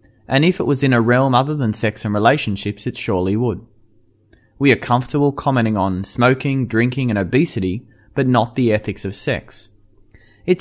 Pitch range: 105-140 Hz